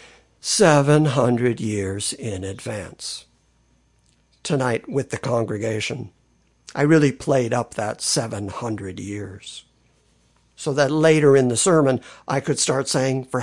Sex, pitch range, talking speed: male, 110-155 Hz, 115 wpm